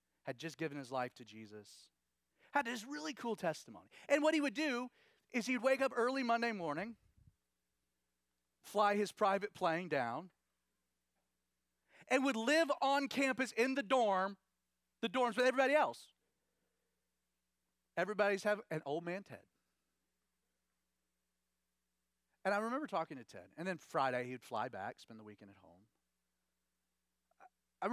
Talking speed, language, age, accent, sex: 140 wpm, English, 40-59, American, male